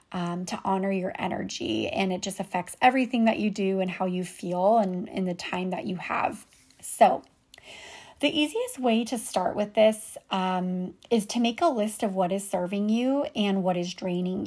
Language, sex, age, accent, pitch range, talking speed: English, female, 30-49, American, 185-230 Hz, 195 wpm